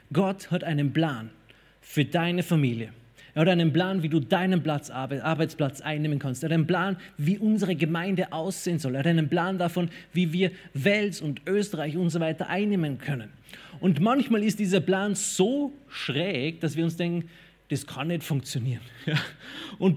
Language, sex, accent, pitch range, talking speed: German, male, German, 145-185 Hz, 175 wpm